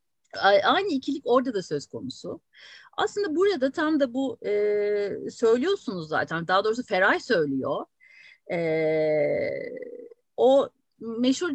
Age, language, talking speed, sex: 50-69, Turkish, 110 wpm, female